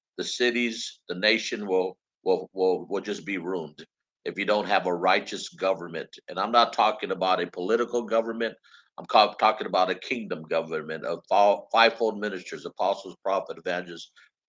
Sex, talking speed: male, 155 wpm